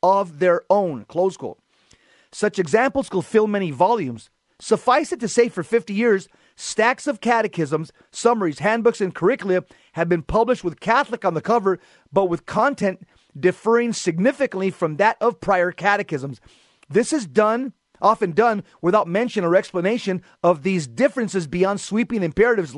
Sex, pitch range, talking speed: male, 175-225 Hz, 155 wpm